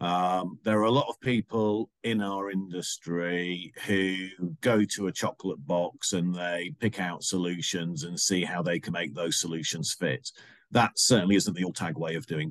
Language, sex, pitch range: English, male, 90-110 Hz